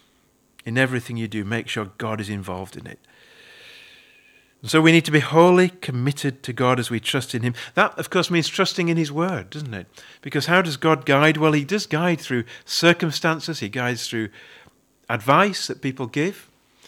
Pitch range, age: 120-160 Hz, 40-59